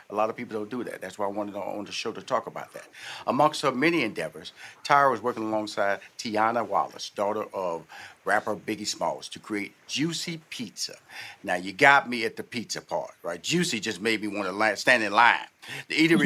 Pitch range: 115-155 Hz